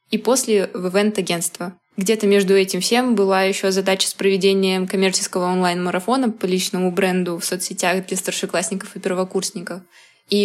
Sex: female